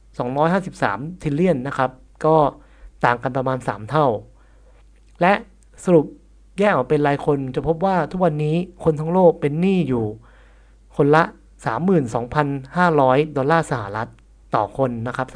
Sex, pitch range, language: male, 130-175 Hz, Thai